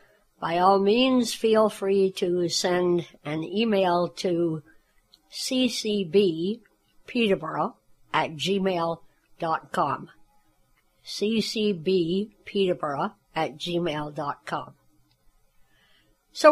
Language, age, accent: English, 60-79, American